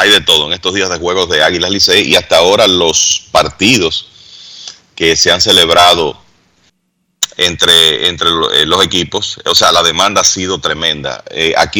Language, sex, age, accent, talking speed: Spanish, male, 30-49, Venezuelan, 170 wpm